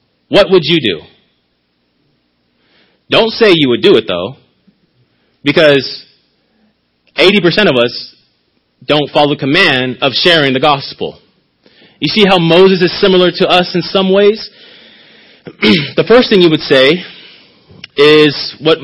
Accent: American